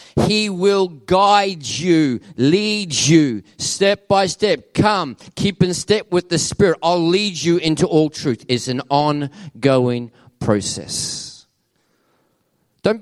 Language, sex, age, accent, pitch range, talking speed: English, male, 40-59, Australian, 170-250 Hz, 125 wpm